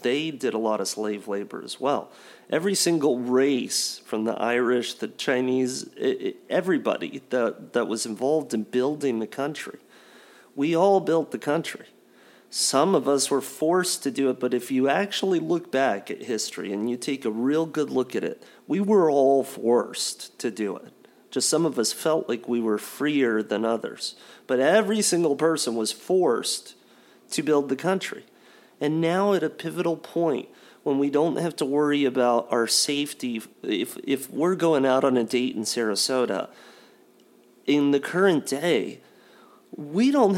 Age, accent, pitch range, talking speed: 40-59, American, 120-160 Hz, 170 wpm